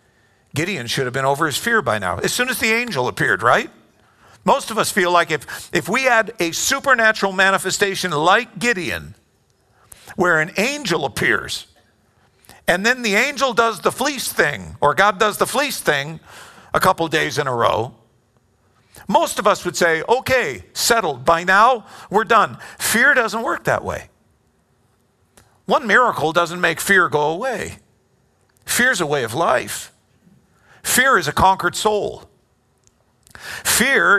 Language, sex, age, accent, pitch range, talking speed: English, male, 50-69, American, 160-225 Hz, 155 wpm